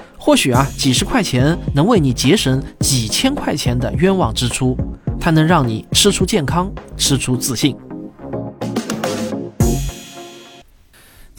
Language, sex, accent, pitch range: Chinese, male, native, 120-190 Hz